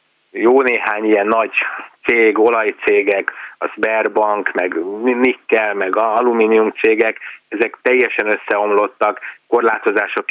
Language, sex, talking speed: Hungarian, male, 100 wpm